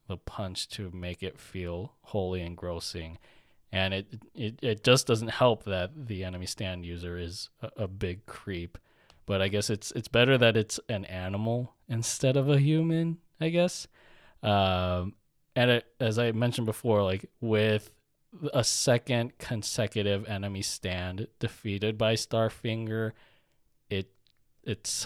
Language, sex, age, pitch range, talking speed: English, male, 20-39, 90-115 Hz, 145 wpm